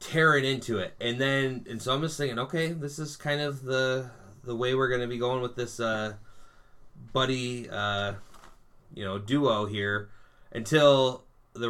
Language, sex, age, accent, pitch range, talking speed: English, male, 20-39, American, 105-125 Hz, 175 wpm